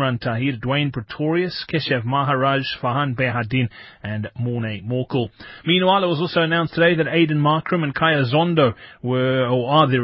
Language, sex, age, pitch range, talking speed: English, male, 30-49, 125-155 Hz, 155 wpm